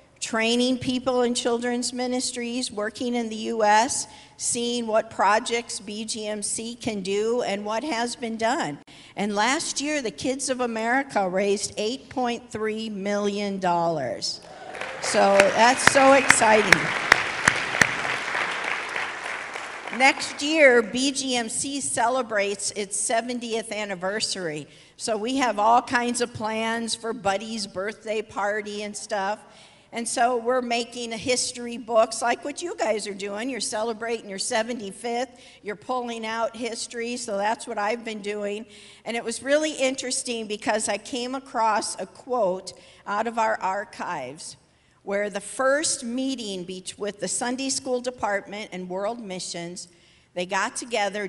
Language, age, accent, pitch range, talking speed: English, 50-69, American, 205-245 Hz, 130 wpm